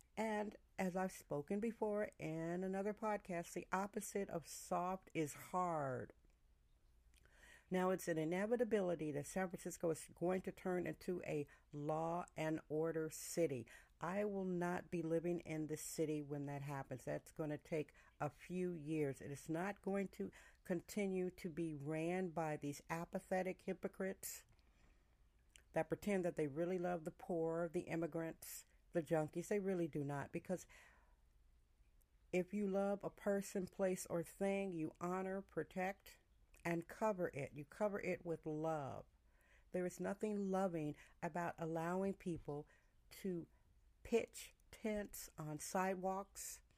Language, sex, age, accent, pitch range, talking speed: English, female, 50-69, American, 160-195 Hz, 140 wpm